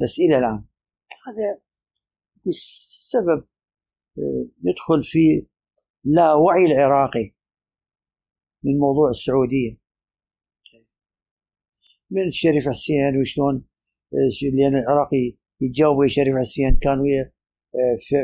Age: 60-79